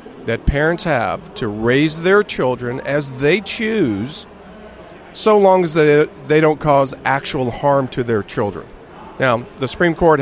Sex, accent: male, American